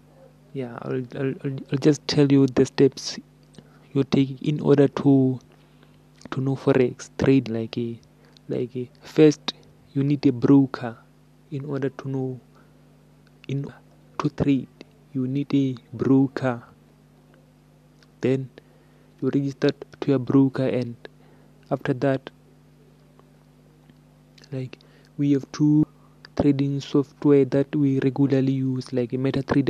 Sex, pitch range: male, 125-140 Hz